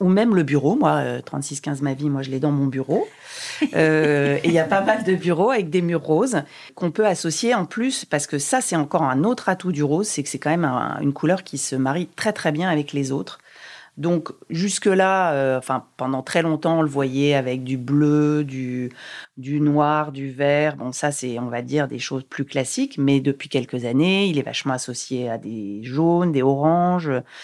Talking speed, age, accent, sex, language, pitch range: 220 wpm, 40-59, French, female, French, 135-170 Hz